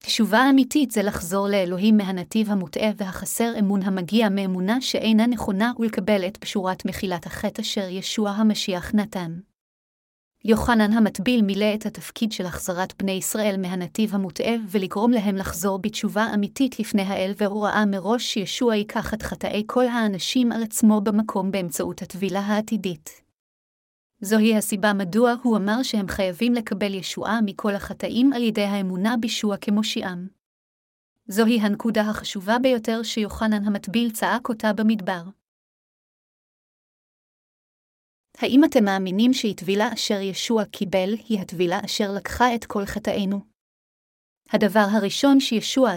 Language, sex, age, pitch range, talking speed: Hebrew, female, 30-49, 195-225 Hz, 125 wpm